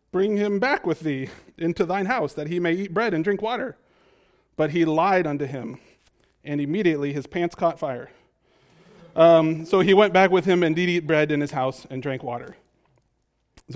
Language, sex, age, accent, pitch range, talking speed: English, male, 30-49, American, 135-165 Hz, 195 wpm